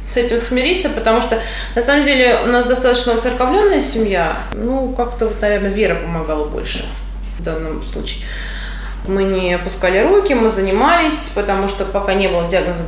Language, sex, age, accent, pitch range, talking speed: Russian, female, 20-39, native, 180-240 Hz, 160 wpm